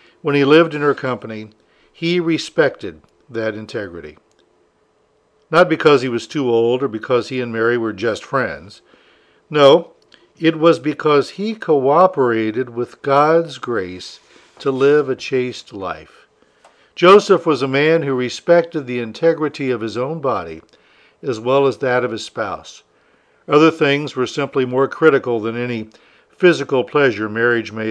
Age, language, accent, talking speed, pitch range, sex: 60-79, English, American, 150 wpm, 120-155 Hz, male